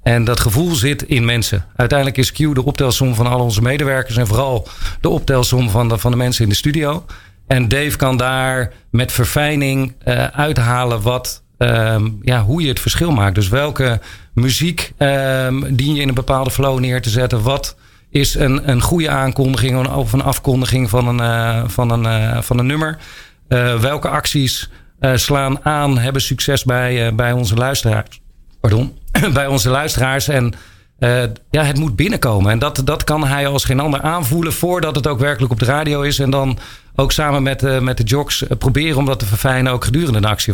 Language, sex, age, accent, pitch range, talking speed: Dutch, male, 40-59, Dutch, 120-140 Hz, 195 wpm